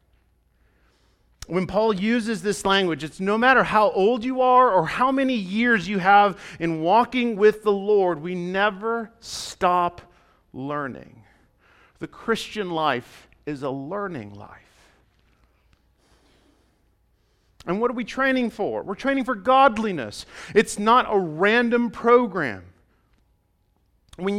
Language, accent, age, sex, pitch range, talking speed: English, American, 40-59, male, 175-240 Hz, 125 wpm